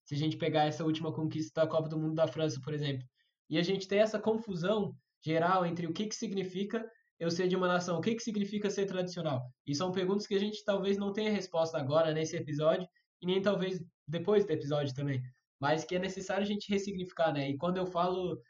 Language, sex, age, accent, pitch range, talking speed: Portuguese, male, 10-29, Brazilian, 155-185 Hz, 225 wpm